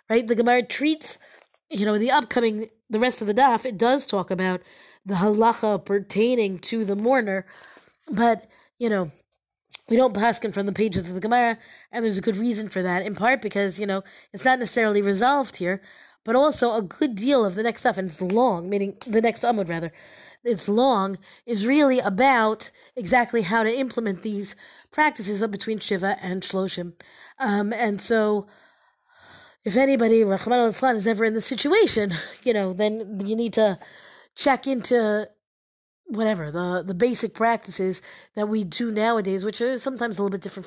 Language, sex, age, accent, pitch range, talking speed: English, female, 30-49, American, 200-245 Hz, 180 wpm